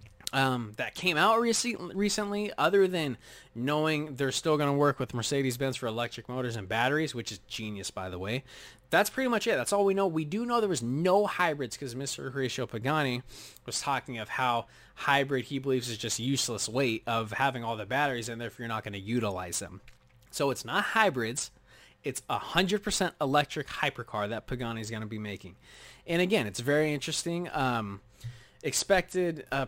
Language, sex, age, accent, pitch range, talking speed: English, male, 20-39, American, 120-175 Hz, 190 wpm